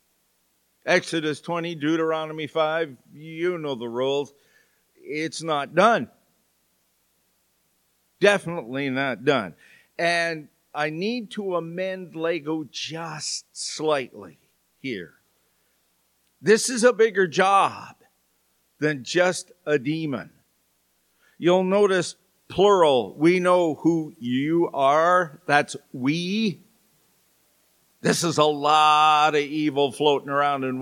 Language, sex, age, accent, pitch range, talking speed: English, male, 50-69, American, 145-180 Hz, 100 wpm